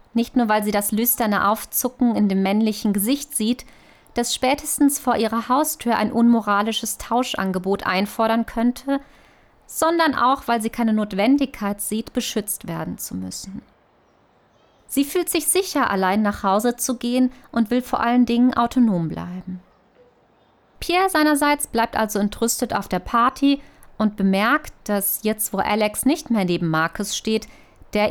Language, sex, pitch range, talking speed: German, female, 200-250 Hz, 145 wpm